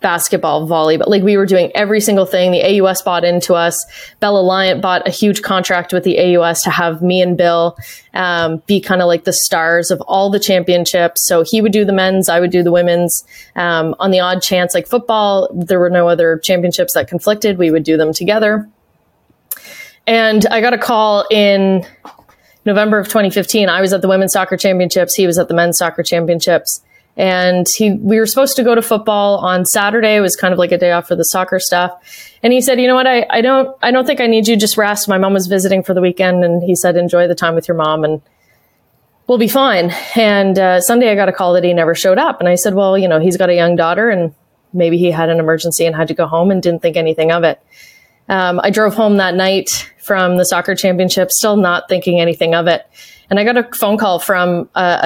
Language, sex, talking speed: English, female, 235 wpm